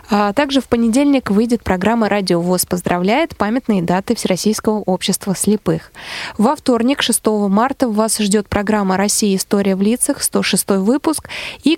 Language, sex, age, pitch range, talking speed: Russian, female, 20-39, 195-245 Hz, 145 wpm